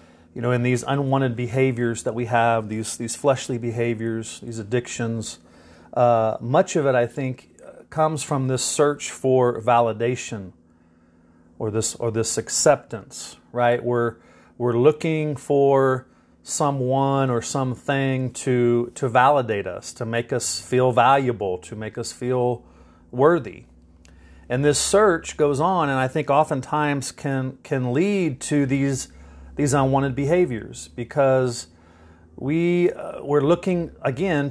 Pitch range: 110-140 Hz